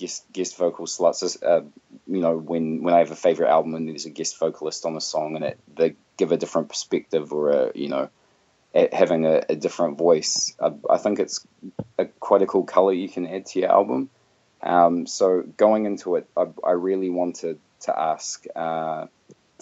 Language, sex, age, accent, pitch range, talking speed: English, male, 20-39, Australian, 80-90 Hz, 200 wpm